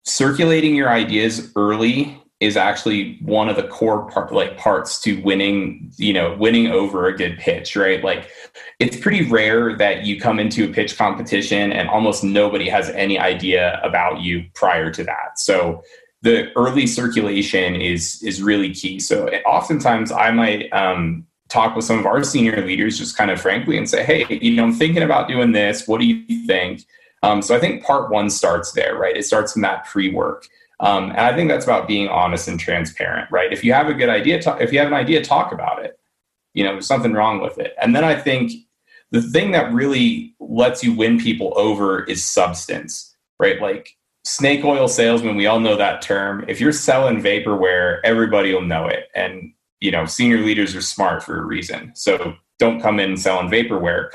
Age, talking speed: 20-39, 195 wpm